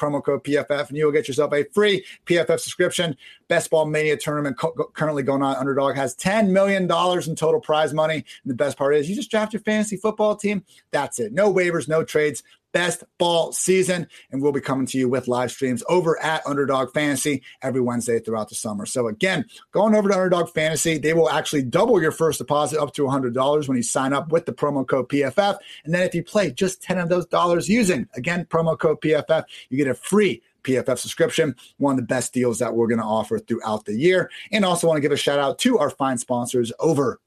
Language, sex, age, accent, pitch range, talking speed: English, male, 30-49, American, 135-175 Hz, 225 wpm